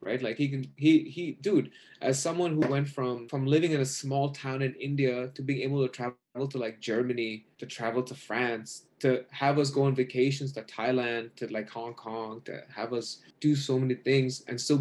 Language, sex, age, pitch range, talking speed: English, male, 20-39, 120-140 Hz, 215 wpm